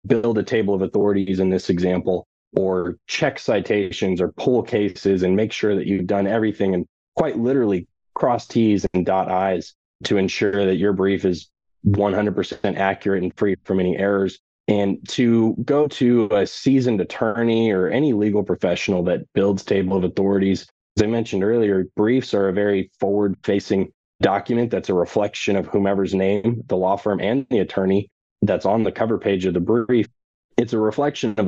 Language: English